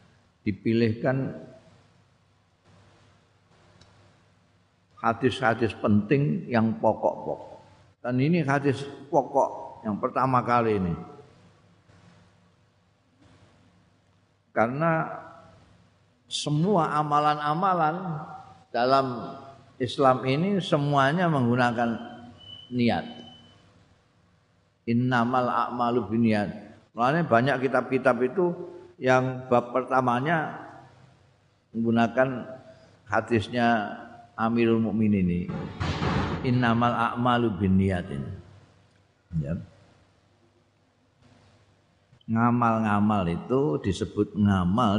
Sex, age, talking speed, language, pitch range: male, 50-69, 60 wpm, Indonesian, 100-125 Hz